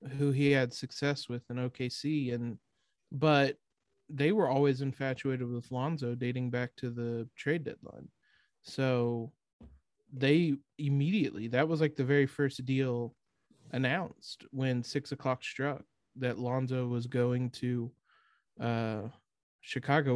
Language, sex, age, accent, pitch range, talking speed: English, male, 30-49, American, 130-155 Hz, 130 wpm